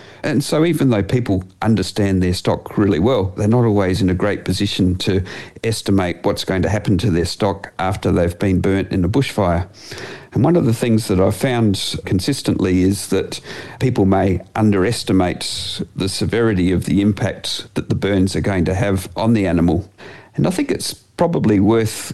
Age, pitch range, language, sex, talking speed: 50-69, 95-115 Hz, English, male, 185 wpm